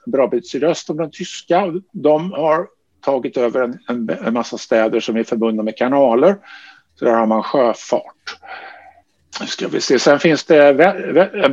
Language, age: Swedish, 50-69